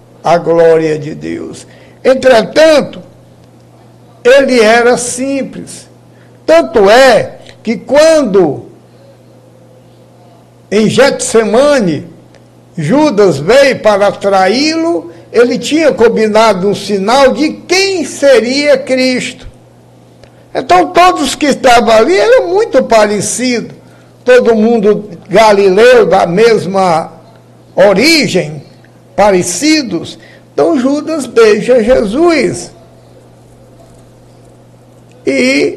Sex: male